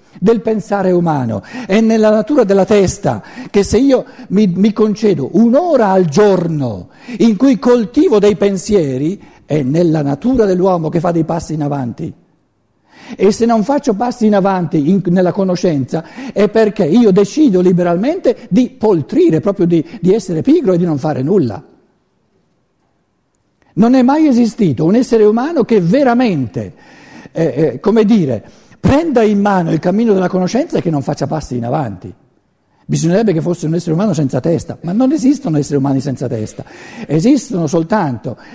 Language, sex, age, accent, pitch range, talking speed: Italian, male, 60-79, native, 165-230 Hz, 160 wpm